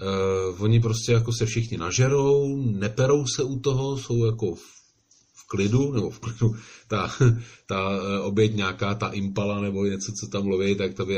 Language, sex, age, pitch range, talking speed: Czech, male, 40-59, 95-120 Hz, 175 wpm